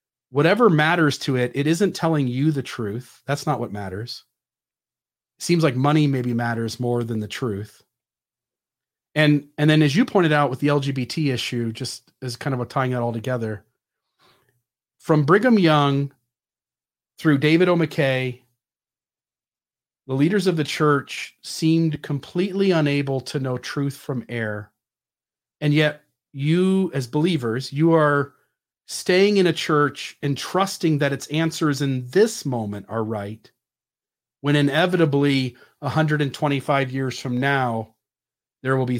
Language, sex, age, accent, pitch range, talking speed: English, male, 40-59, American, 125-155 Hz, 145 wpm